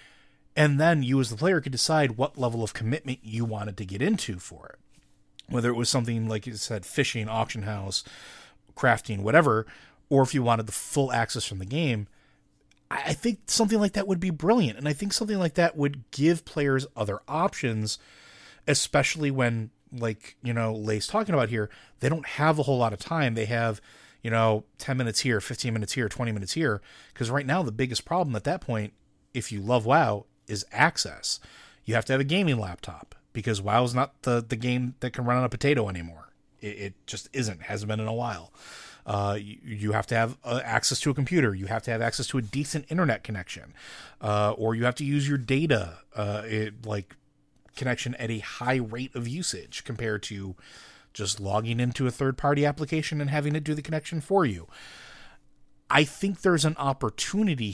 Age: 30-49